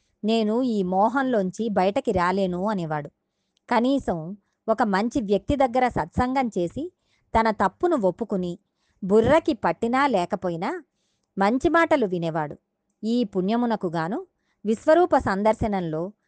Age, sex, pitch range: 20-39, male, 185-255 Hz